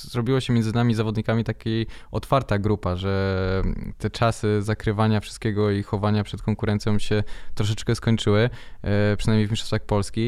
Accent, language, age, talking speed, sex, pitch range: native, Polish, 20-39, 140 wpm, male, 100-115 Hz